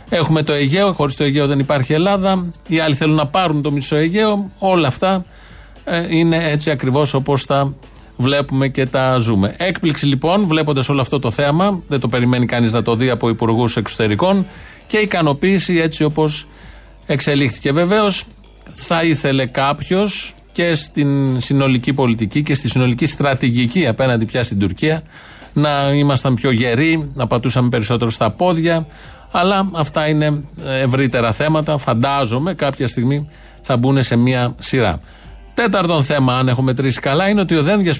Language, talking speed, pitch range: Greek, 155 wpm, 130-165 Hz